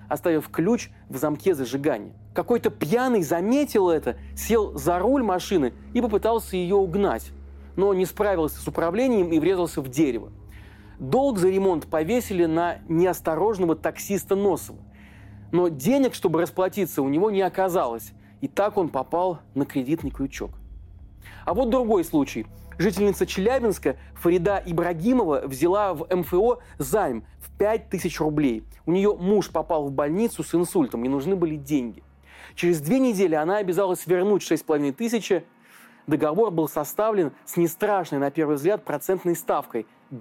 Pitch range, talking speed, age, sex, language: 150-205 Hz, 140 wpm, 30-49, male, Russian